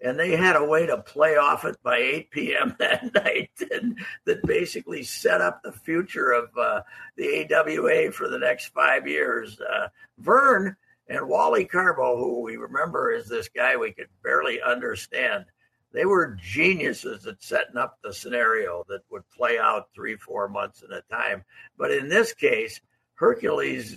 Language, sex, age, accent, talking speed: English, male, 60-79, American, 170 wpm